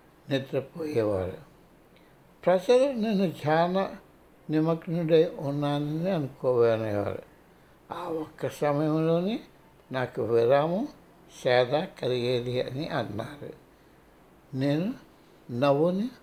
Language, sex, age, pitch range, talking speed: Telugu, male, 60-79, 135-190 Hz, 65 wpm